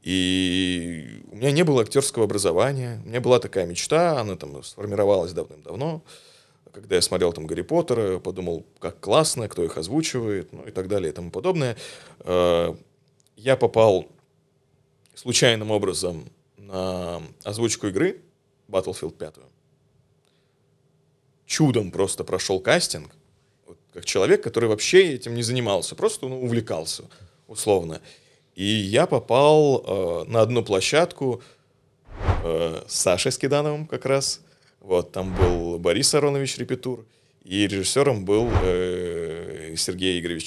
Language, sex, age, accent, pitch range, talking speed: Russian, male, 30-49, native, 100-140 Hz, 125 wpm